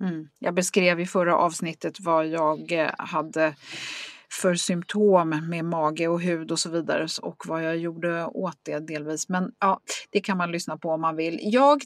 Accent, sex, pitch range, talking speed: native, female, 165-230 Hz, 175 wpm